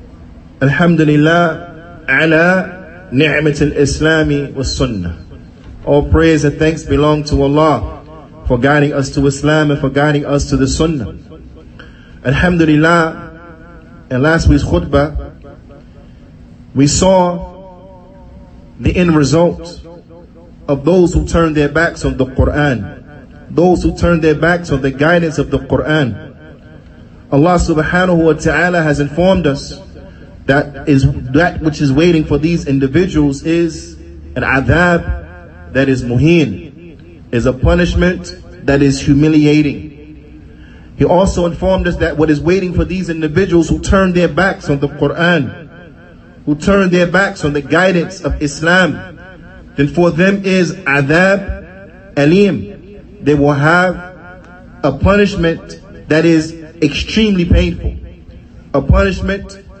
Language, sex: English, male